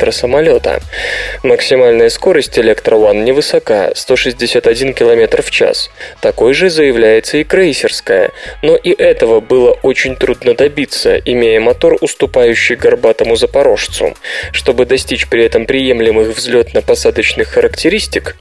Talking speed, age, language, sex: 110 wpm, 20-39, Russian, male